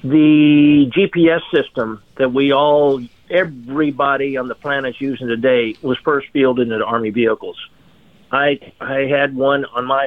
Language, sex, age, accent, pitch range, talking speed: English, male, 50-69, American, 120-150 Hz, 150 wpm